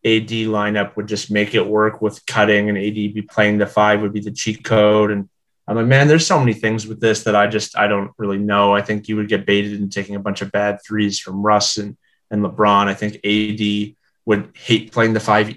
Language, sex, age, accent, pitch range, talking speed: English, male, 20-39, American, 100-110 Hz, 245 wpm